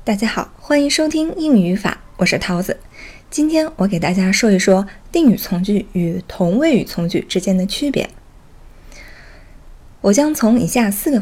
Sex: female